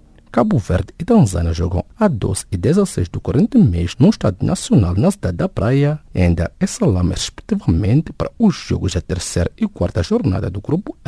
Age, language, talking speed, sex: 50-69, English, 185 wpm, male